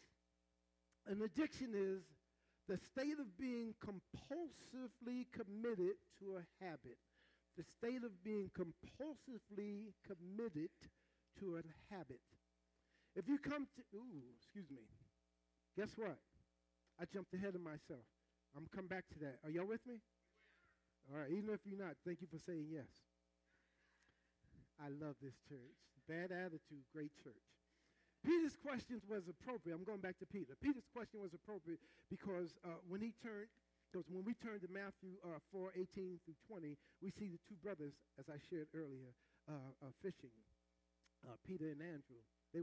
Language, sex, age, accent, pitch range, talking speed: English, male, 50-69, American, 145-205 Hz, 155 wpm